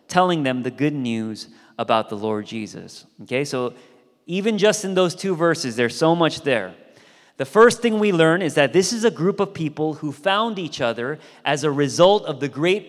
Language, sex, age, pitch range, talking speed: English, male, 30-49, 130-170 Hz, 205 wpm